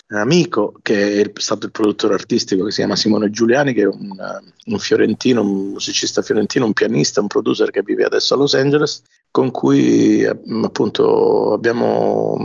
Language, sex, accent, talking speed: English, male, Italian, 170 wpm